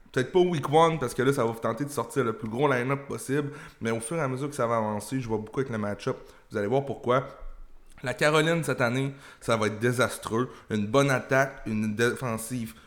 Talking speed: 245 wpm